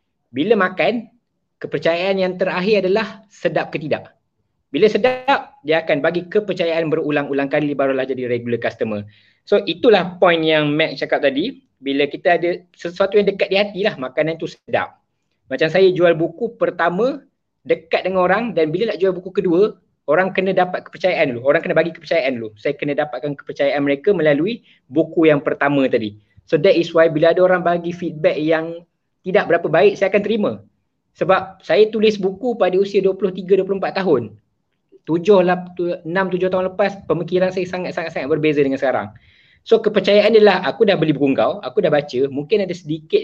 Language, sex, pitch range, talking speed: Malay, male, 150-195 Hz, 170 wpm